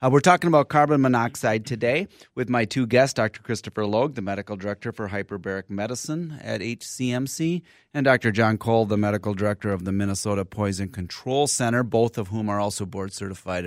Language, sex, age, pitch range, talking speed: English, male, 30-49, 105-130 Hz, 180 wpm